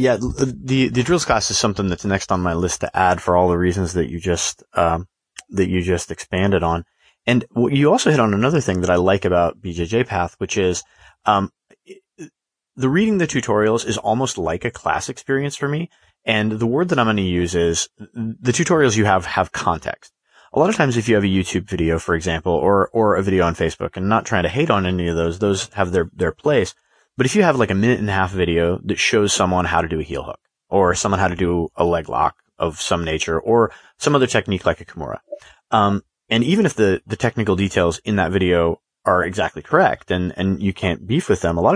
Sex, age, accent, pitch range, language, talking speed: male, 30-49, American, 90-115 Hz, English, 235 wpm